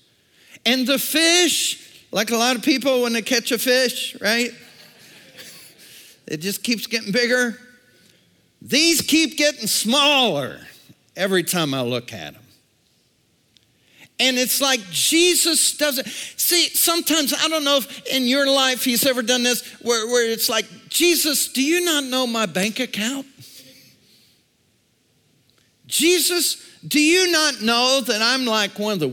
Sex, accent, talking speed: male, American, 145 wpm